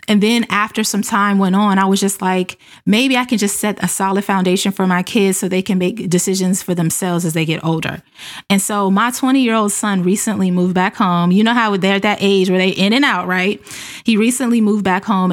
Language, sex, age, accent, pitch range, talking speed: English, female, 20-39, American, 180-210 Hz, 235 wpm